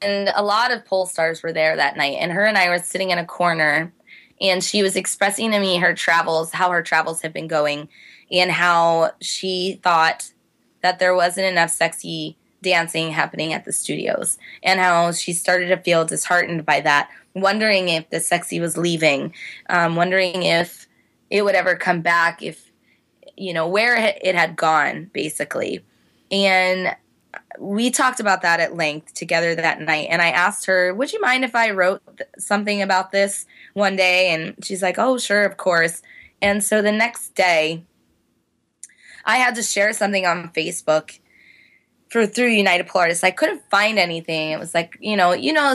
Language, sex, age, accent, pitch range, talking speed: English, female, 20-39, American, 170-215 Hz, 180 wpm